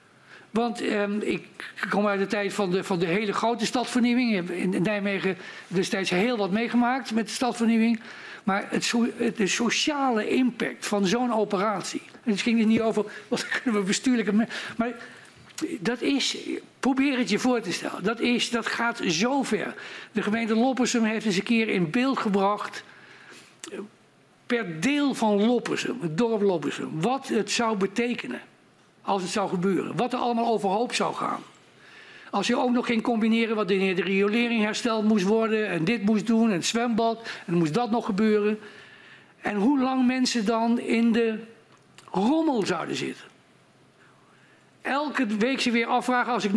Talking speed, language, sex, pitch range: 170 wpm, Dutch, male, 205-245 Hz